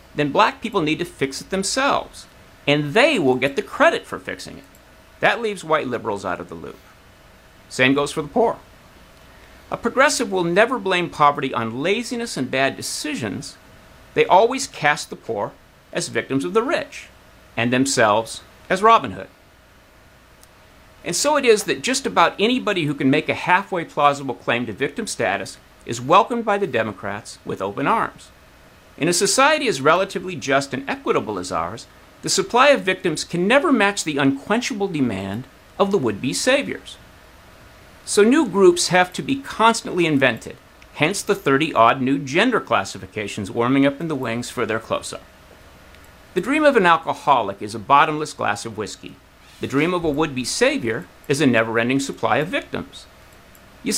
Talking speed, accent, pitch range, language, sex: 170 wpm, American, 130-205 Hz, English, male